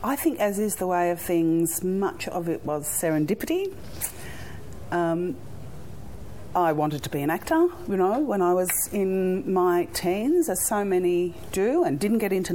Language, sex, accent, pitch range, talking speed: English, female, Australian, 125-185 Hz, 170 wpm